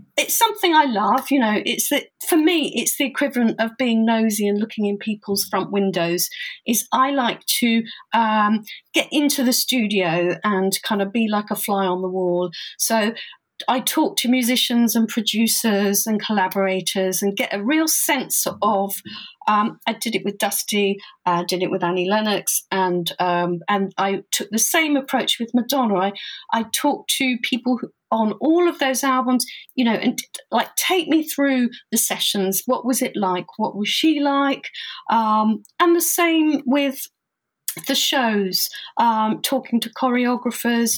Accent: British